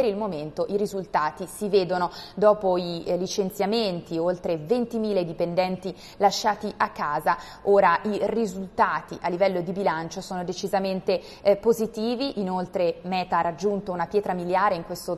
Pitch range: 175-205 Hz